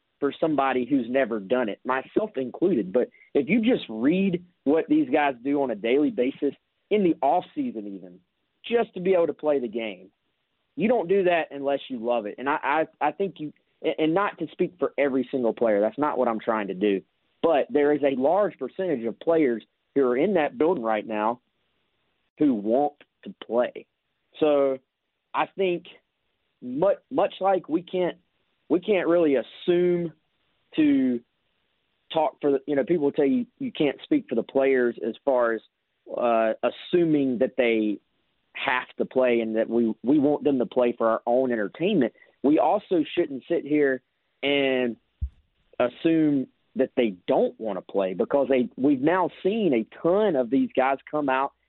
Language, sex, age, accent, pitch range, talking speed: English, male, 30-49, American, 125-165 Hz, 180 wpm